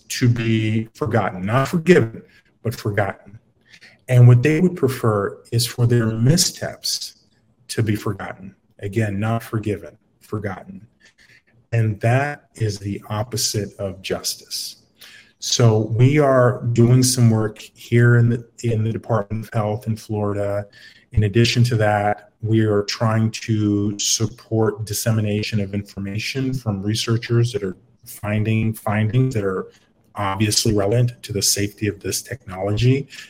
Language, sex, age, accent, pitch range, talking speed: English, male, 30-49, American, 105-120 Hz, 130 wpm